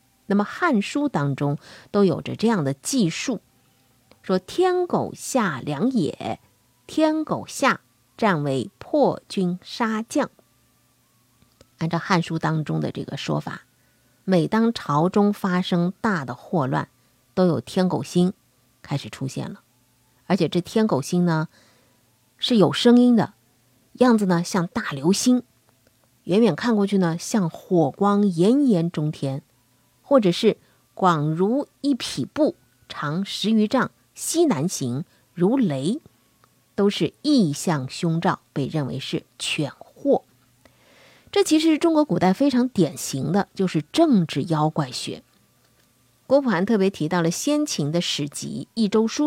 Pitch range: 140-225 Hz